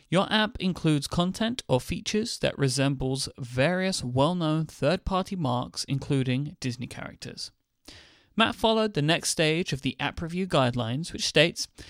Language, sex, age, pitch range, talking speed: English, male, 30-49, 125-175 Hz, 135 wpm